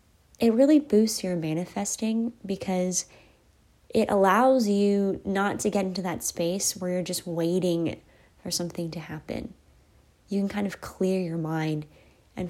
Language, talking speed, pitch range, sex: English, 150 wpm, 165-195 Hz, female